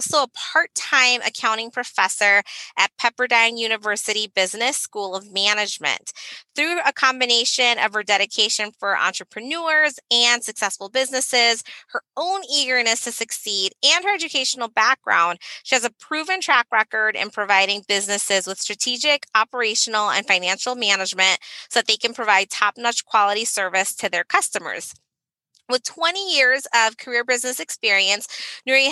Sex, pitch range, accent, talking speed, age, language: female, 205-255 Hz, American, 135 wpm, 20-39, English